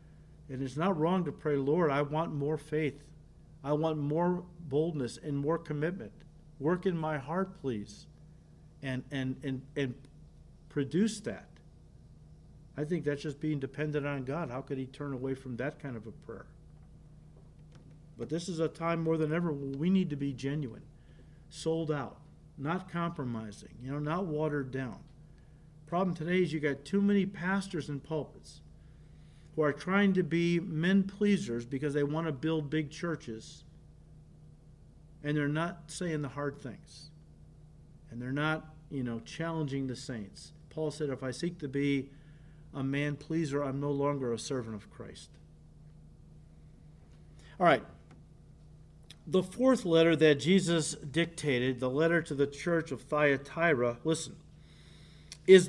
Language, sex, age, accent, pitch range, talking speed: English, male, 50-69, American, 140-165 Hz, 150 wpm